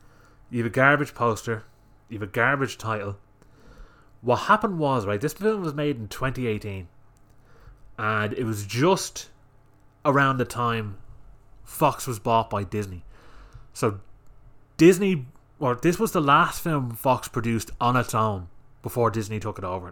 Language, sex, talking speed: English, male, 150 wpm